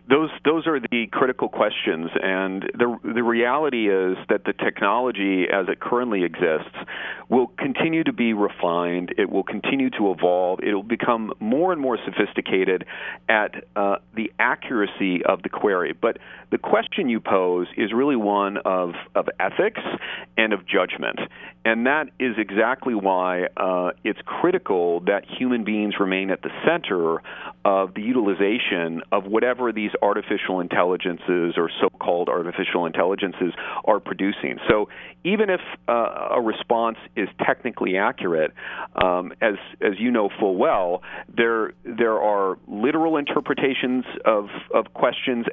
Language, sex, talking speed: English, male, 145 wpm